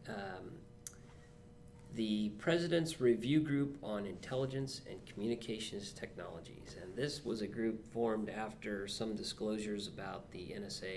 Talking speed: 120 wpm